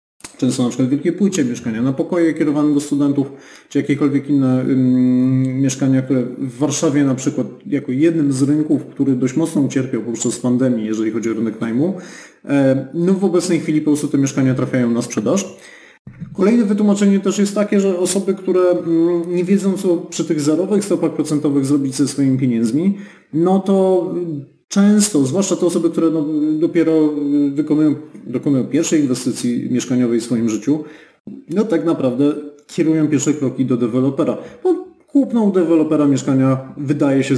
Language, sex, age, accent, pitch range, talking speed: Polish, male, 30-49, native, 130-175 Hz, 155 wpm